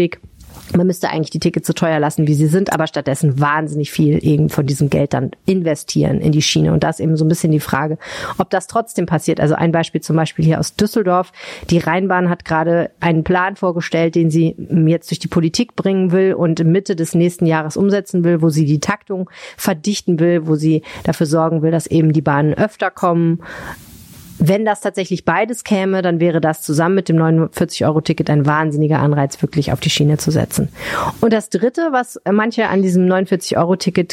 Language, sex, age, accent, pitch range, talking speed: German, female, 30-49, German, 160-190 Hz, 200 wpm